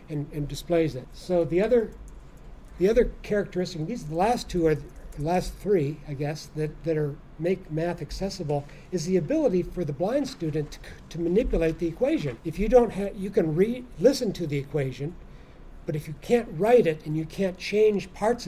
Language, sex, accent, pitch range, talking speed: English, male, American, 155-195 Hz, 200 wpm